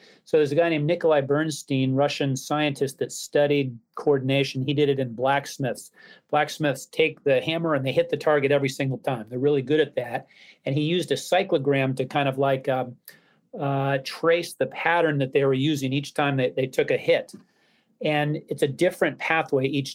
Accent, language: American, English